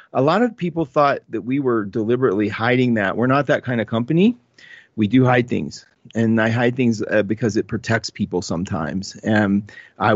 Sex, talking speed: male, 195 wpm